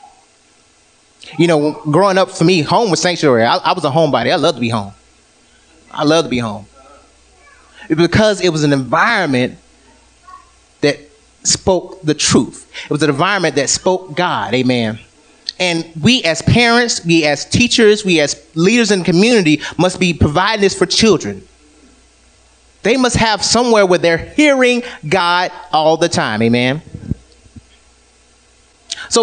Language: English